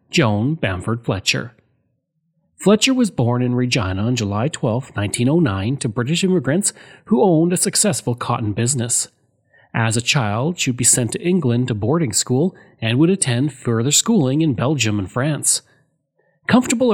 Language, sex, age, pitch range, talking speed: English, male, 30-49, 115-165 Hz, 150 wpm